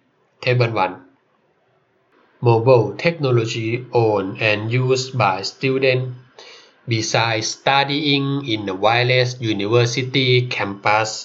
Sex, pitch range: male, 115-135 Hz